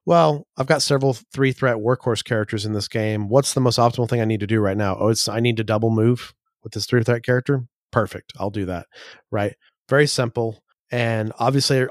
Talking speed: 215 wpm